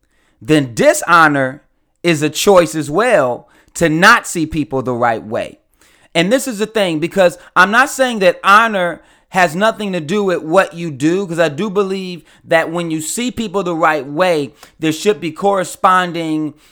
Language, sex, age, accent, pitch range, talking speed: English, male, 30-49, American, 155-200 Hz, 175 wpm